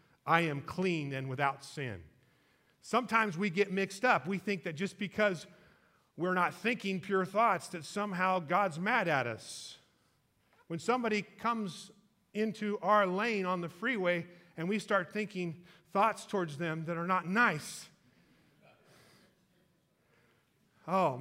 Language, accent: English, American